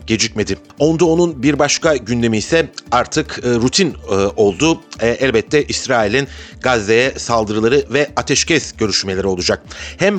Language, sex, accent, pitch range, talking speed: Turkish, male, native, 110-145 Hz, 110 wpm